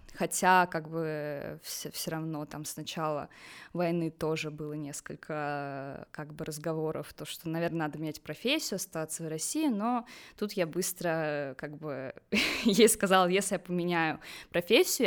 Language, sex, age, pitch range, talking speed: Russian, female, 20-39, 160-205 Hz, 145 wpm